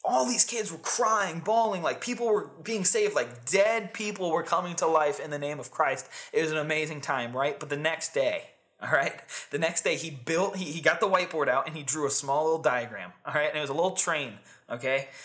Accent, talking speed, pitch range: American, 245 wpm, 140-185 Hz